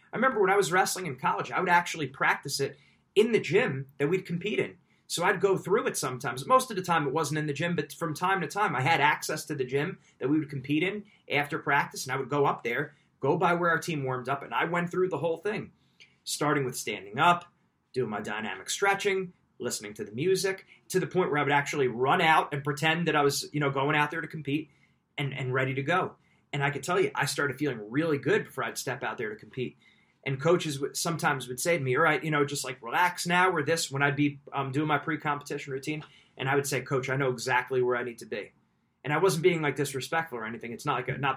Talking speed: 260 wpm